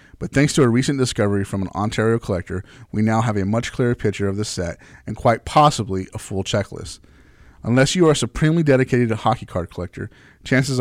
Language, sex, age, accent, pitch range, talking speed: English, male, 30-49, American, 100-120 Hz, 205 wpm